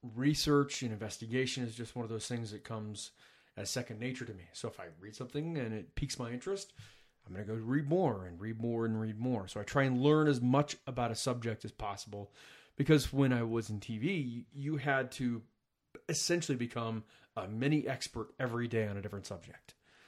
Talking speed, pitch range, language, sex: 210 wpm, 110-140 Hz, English, male